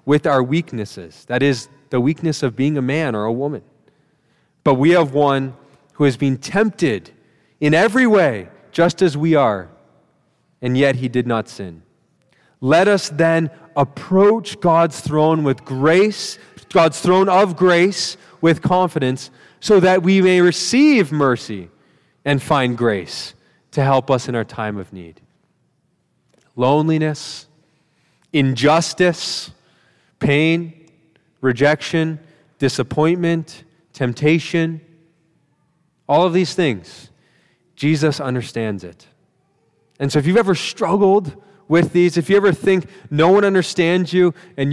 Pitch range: 140-180 Hz